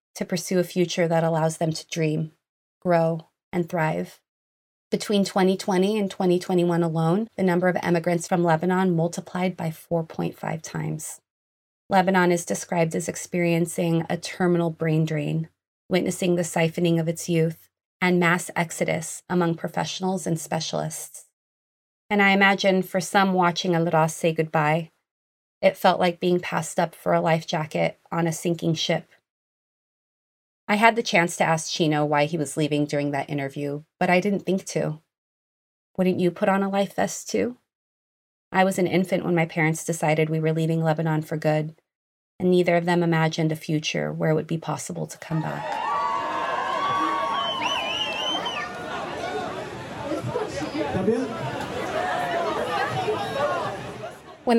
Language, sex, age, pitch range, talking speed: English, female, 30-49, 160-185 Hz, 140 wpm